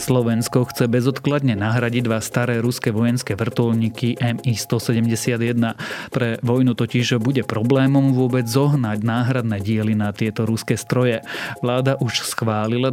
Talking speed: 120 wpm